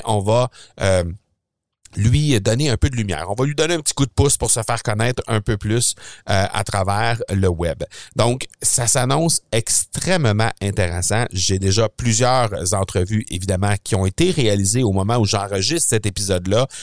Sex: male